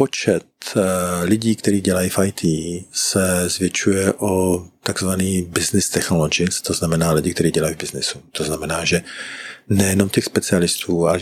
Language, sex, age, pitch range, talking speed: Czech, male, 40-59, 80-95 Hz, 140 wpm